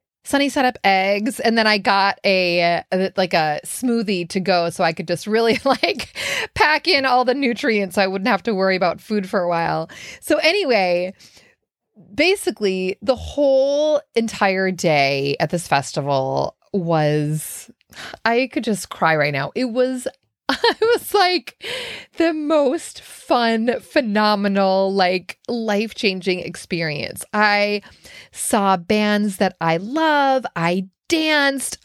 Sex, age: female, 30-49